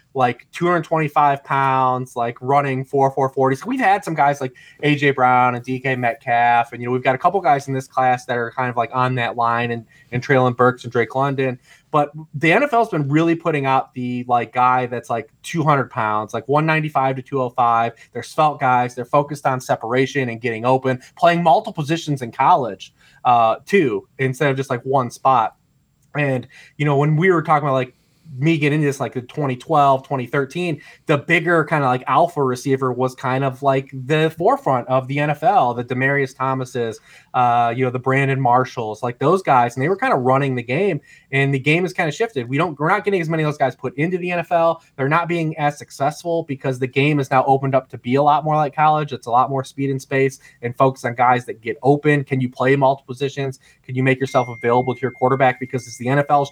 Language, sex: English, male